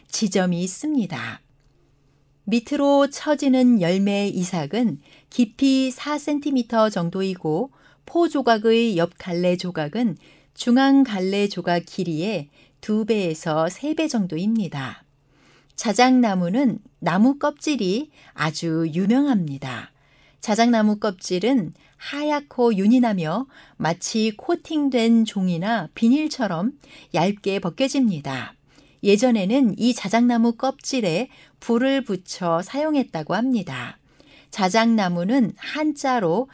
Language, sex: Korean, female